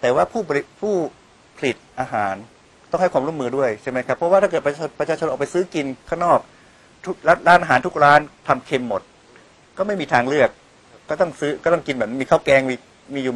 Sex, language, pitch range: male, Thai, 125-160 Hz